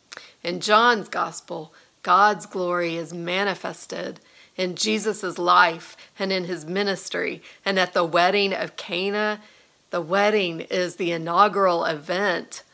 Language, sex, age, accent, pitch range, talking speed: English, female, 40-59, American, 170-200 Hz, 120 wpm